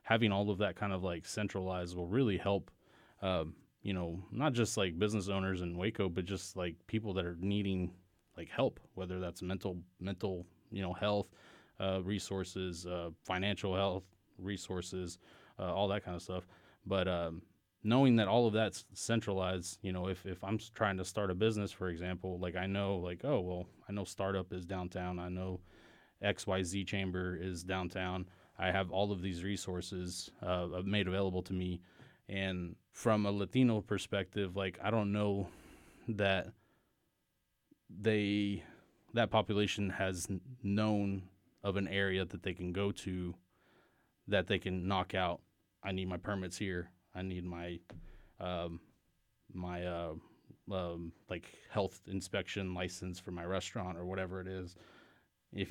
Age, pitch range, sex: 20-39, 90-100 Hz, male